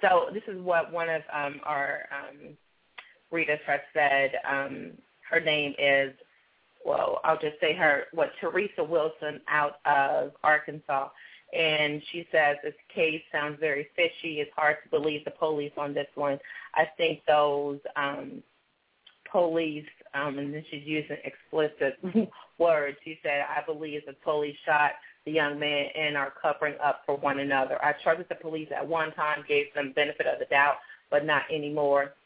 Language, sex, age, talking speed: English, female, 30-49, 165 wpm